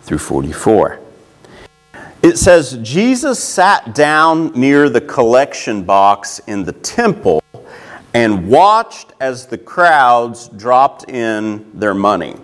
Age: 40-59